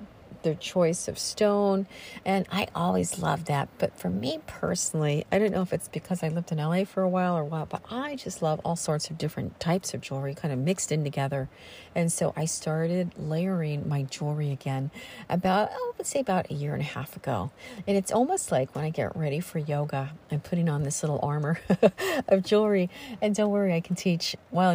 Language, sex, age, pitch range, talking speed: English, female, 50-69, 150-195 Hz, 215 wpm